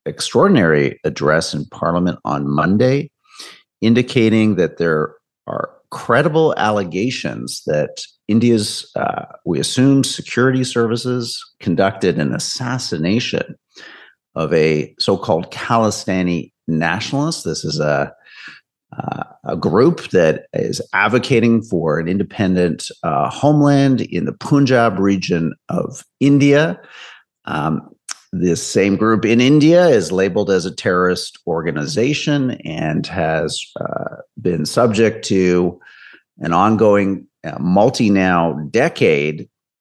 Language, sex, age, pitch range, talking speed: English, male, 50-69, 90-125 Hz, 105 wpm